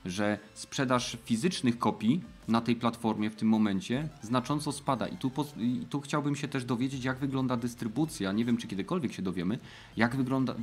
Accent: native